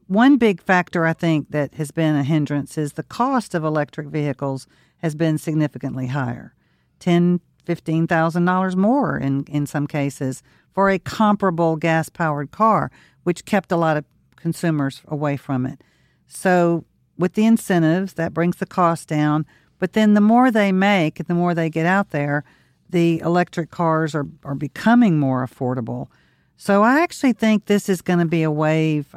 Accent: American